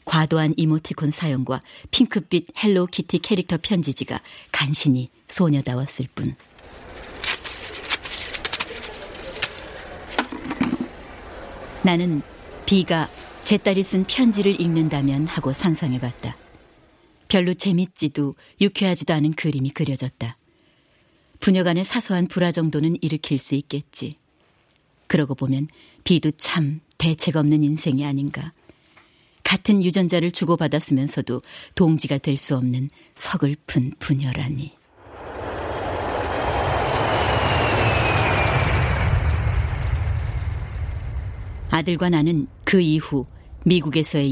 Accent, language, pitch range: native, Korean, 135-175 Hz